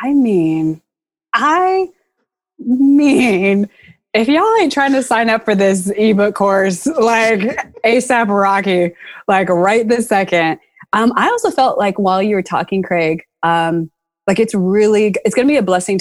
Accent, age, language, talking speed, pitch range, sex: American, 20-39, English, 155 wpm, 175-225 Hz, female